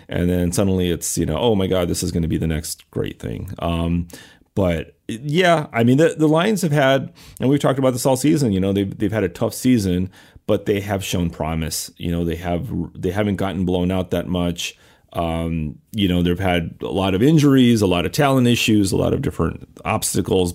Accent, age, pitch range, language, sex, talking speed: American, 30-49, 85-110 Hz, English, male, 230 wpm